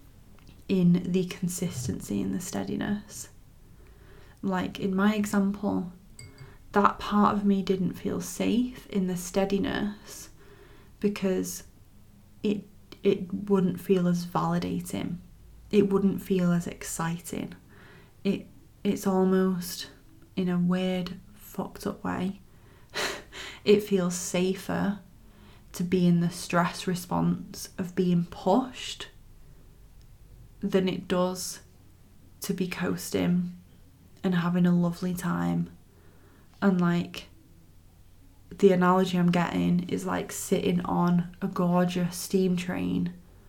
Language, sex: English, female